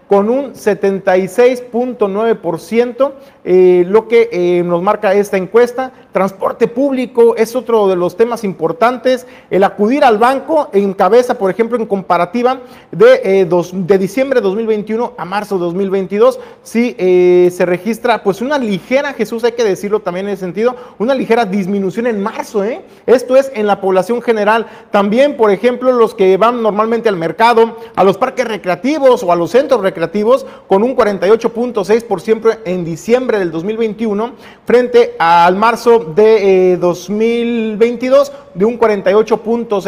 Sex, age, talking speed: male, 40-59, 150 wpm